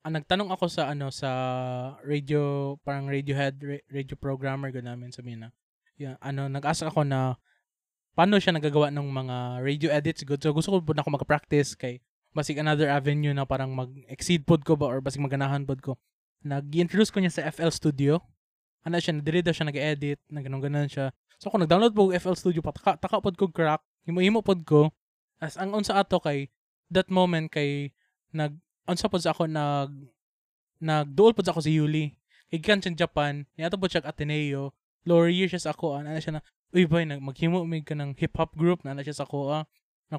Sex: male